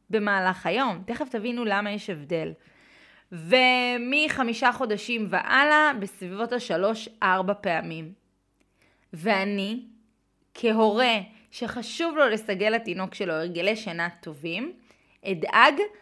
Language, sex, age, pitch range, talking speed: Hebrew, female, 20-39, 200-270 Hz, 90 wpm